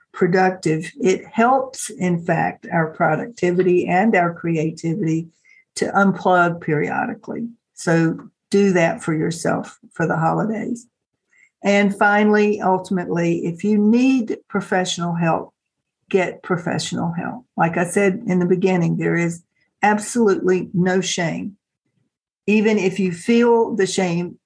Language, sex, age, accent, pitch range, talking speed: English, female, 60-79, American, 170-205 Hz, 120 wpm